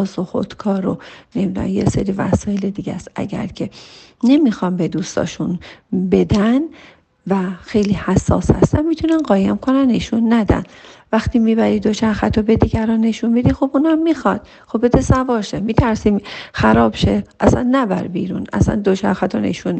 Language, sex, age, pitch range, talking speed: Persian, female, 40-59, 195-260 Hz, 150 wpm